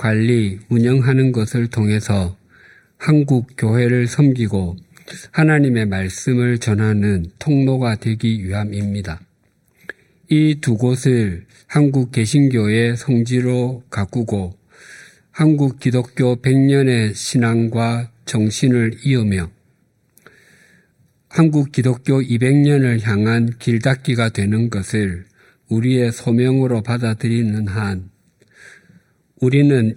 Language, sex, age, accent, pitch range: Korean, male, 50-69, native, 105-135 Hz